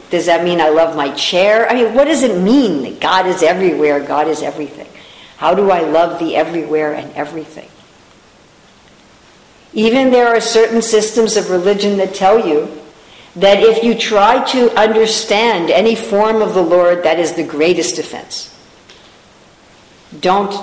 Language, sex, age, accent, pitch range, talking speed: English, female, 50-69, American, 155-200 Hz, 160 wpm